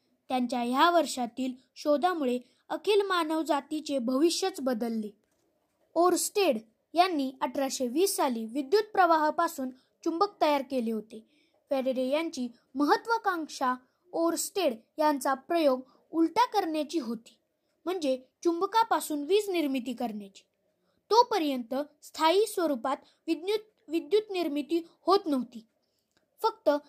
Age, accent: 20-39, native